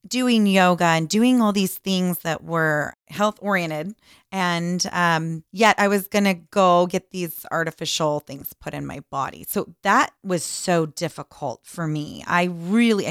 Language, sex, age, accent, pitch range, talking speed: English, female, 30-49, American, 170-220 Hz, 165 wpm